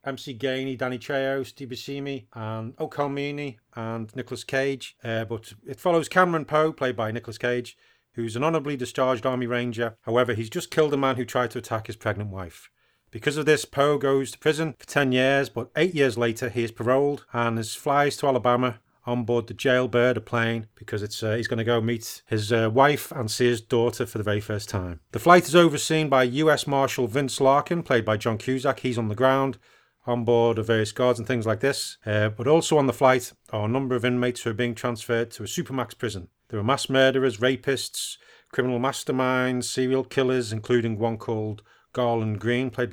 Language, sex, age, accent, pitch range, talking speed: English, male, 30-49, British, 115-135 Hz, 205 wpm